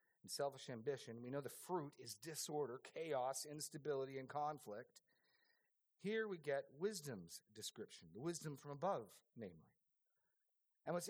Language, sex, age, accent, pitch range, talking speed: English, male, 40-59, American, 135-200 Hz, 135 wpm